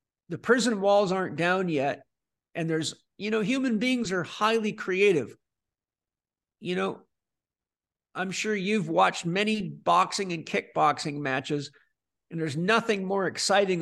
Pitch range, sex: 175-205 Hz, male